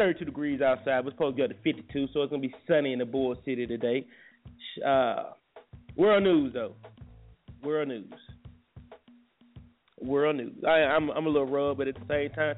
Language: English